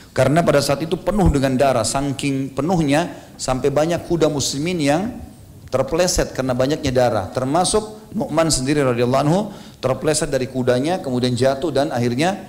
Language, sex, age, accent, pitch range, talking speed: Indonesian, male, 40-59, native, 125-165 Hz, 140 wpm